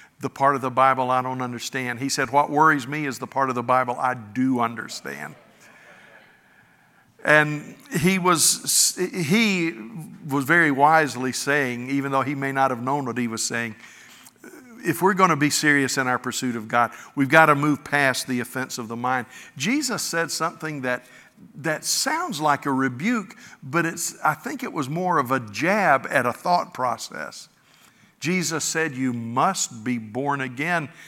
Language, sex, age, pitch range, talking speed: English, male, 50-69, 130-170 Hz, 175 wpm